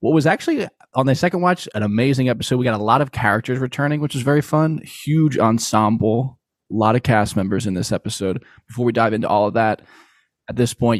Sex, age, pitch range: male, 20-39, 105-130 Hz